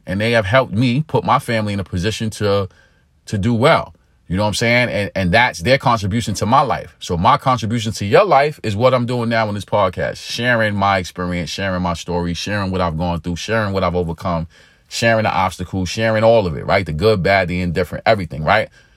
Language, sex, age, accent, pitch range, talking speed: English, male, 30-49, American, 90-115 Hz, 230 wpm